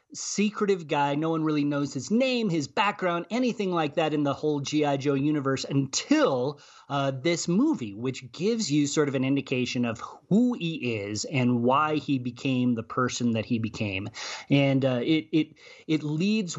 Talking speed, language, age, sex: 180 wpm, English, 30-49, male